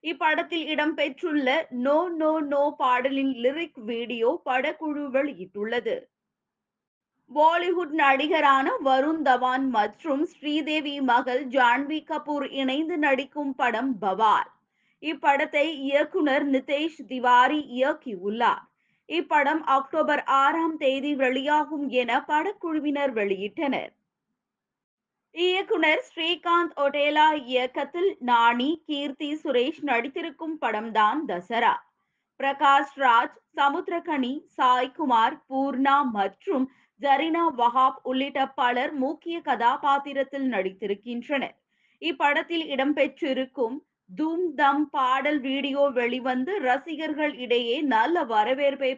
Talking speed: 85 wpm